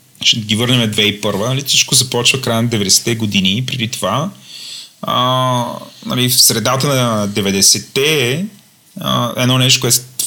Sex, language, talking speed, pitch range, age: male, Bulgarian, 140 wpm, 110-140 Hz, 30-49